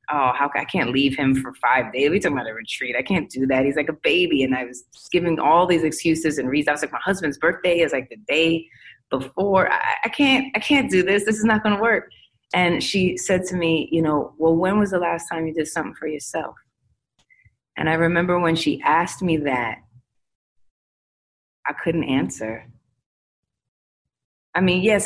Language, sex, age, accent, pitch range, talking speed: English, female, 20-39, American, 140-180 Hz, 205 wpm